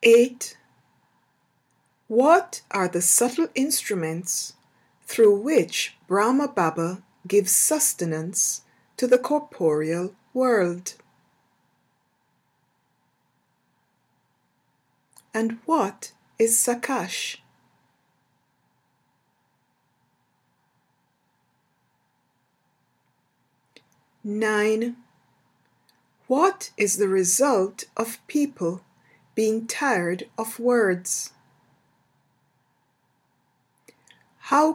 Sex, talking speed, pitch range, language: female, 55 wpm, 180-260 Hz, English